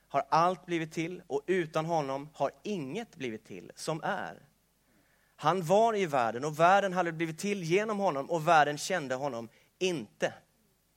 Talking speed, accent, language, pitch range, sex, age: 160 wpm, native, Swedish, 150-190 Hz, male, 30-49